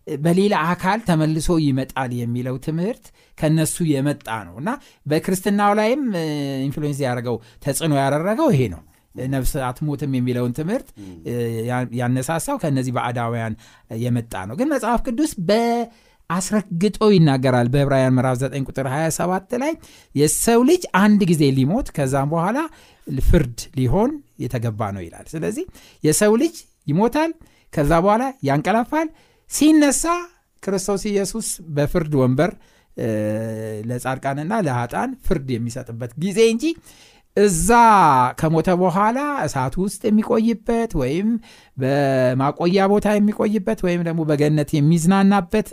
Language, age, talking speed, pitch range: Amharic, 60-79, 90 wpm, 125-210 Hz